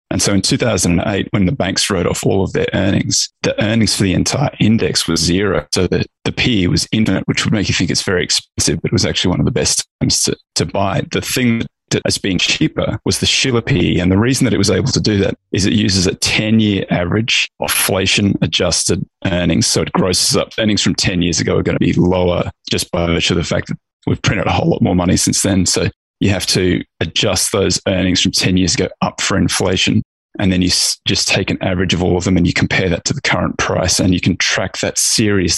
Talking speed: 245 wpm